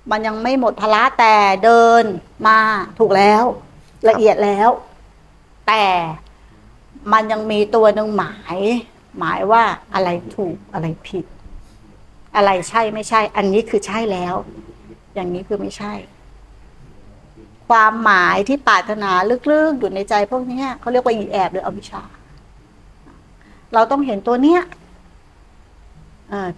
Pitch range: 210-275 Hz